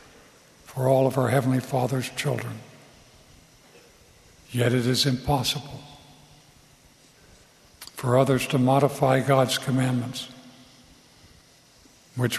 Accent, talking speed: American, 85 wpm